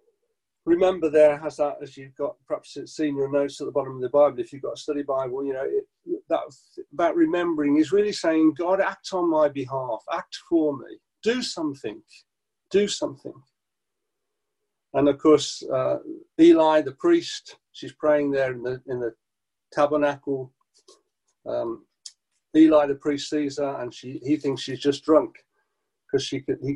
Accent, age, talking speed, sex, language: British, 50-69, 170 wpm, male, English